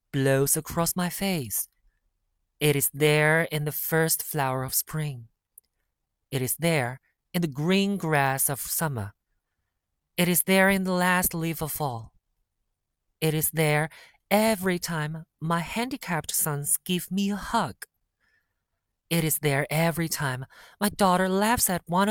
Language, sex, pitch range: Chinese, male, 135-190 Hz